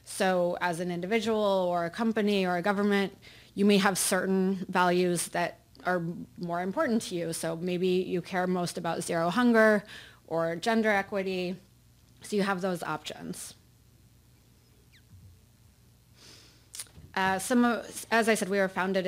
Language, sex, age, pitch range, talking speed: English, female, 20-39, 165-190 Hz, 140 wpm